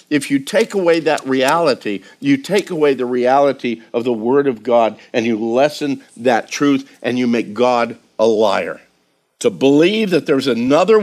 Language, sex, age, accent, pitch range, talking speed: English, male, 50-69, American, 130-175 Hz, 175 wpm